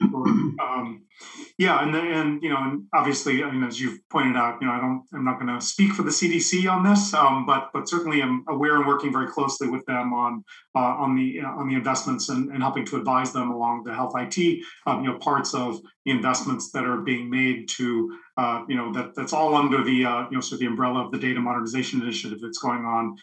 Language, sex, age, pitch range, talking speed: English, male, 40-59, 125-155 Hz, 245 wpm